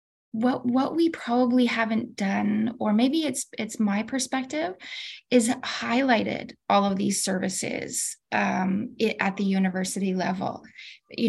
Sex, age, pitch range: female, 20-39, 195-245 Hz